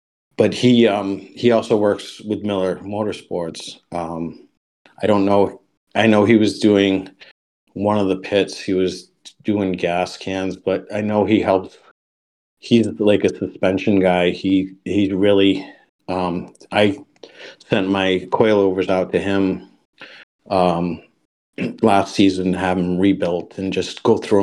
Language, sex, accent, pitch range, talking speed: English, male, American, 90-100 Hz, 145 wpm